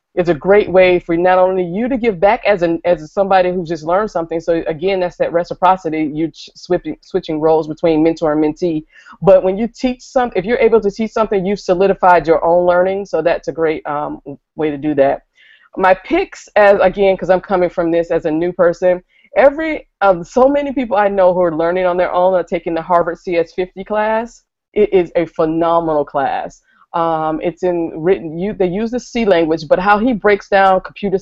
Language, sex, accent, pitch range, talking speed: English, female, American, 165-195 Hz, 210 wpm